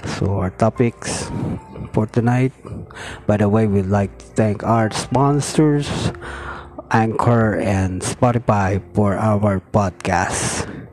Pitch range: 100-125 Hz